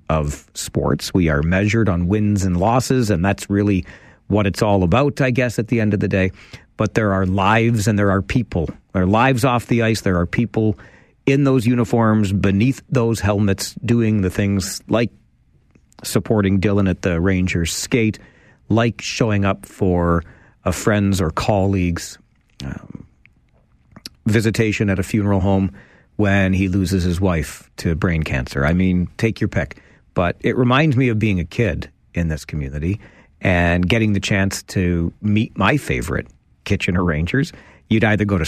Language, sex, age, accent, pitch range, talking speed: English, male, 40-59, American, 95-120 Hz, 170 wpm